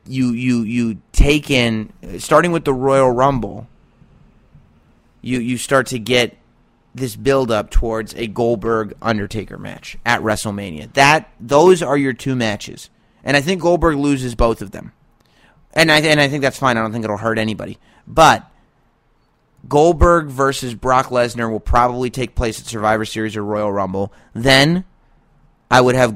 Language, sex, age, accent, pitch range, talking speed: English, male, 30-49, American, 110-140 Hz, 165 wpm